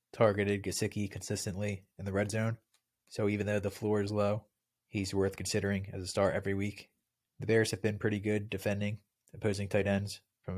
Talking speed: 185 wpm